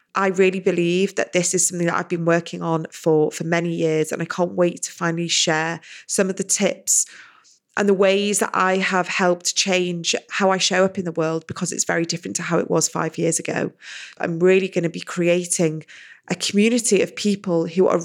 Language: English